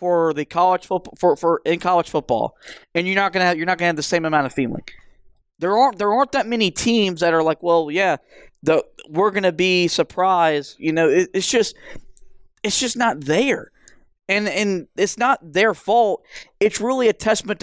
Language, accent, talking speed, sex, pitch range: English, American, 200 wpm, male, 170-215 Hz